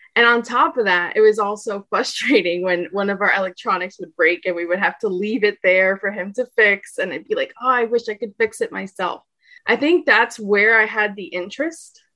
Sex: female